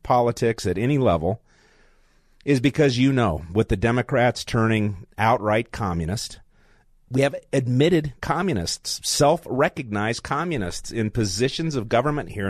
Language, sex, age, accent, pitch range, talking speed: English, male, 40-59, American, 100-125 Hz, 120 wpm